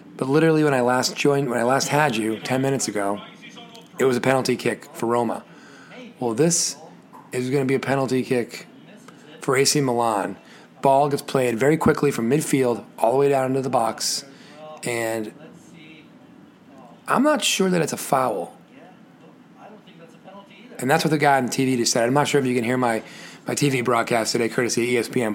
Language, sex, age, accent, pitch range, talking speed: English, male, 30-49, American, 120-150 Hz, 185 wpm